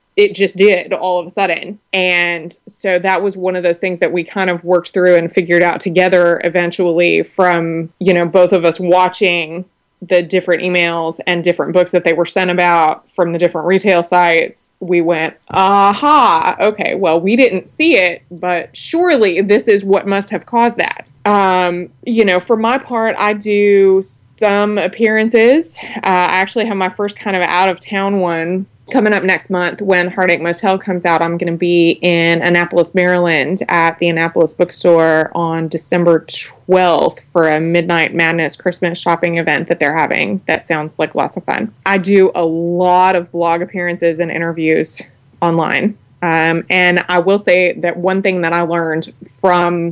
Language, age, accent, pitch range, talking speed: English, 20-39, American, 170-190 Hz, 180 wpm